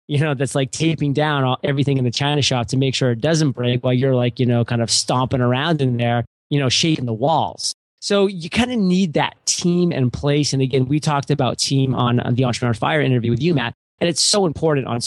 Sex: male